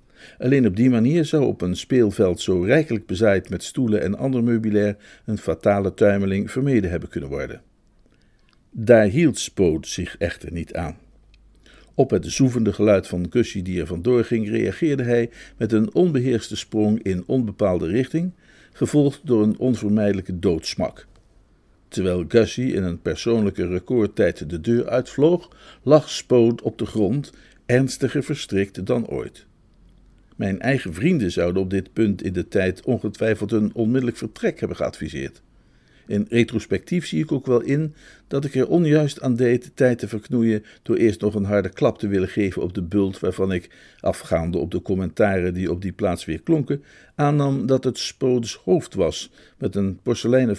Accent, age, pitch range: Dutch, 50-69, 95-130 Hz